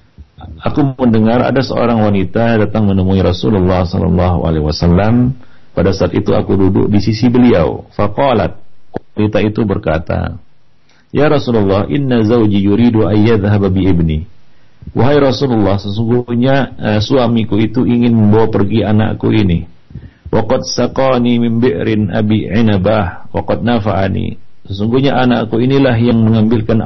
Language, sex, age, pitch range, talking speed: Malay, male, 50-69, 100-125 Hz, 120 wpm